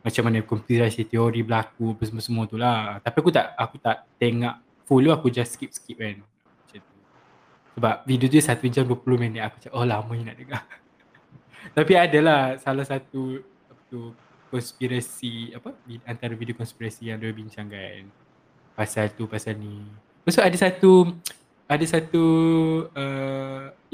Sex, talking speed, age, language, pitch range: male, 155 wpm, 20-39, Malay, 115-140 Hz